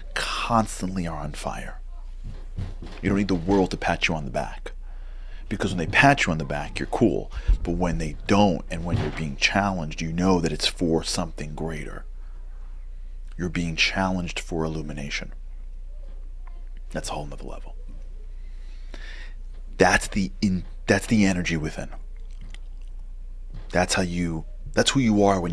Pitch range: 65-90 Hz